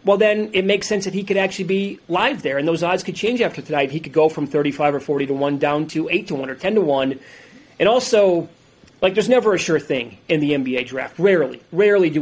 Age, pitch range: 30-49, 145-175 Hz